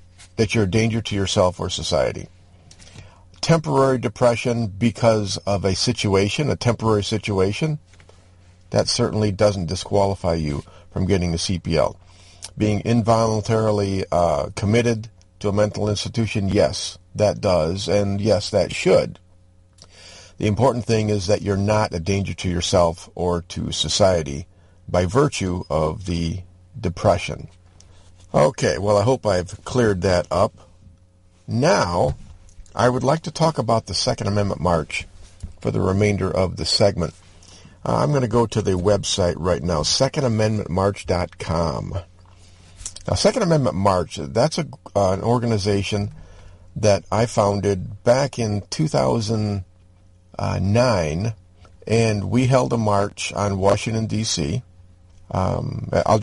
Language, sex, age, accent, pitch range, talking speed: English, male, 50-69, American, 90-110 Hz, 125 wpm